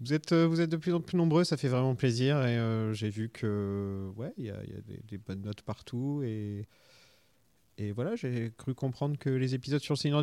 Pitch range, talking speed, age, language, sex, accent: 110-140 Hz, 235 wpm, 30-49, French, male, French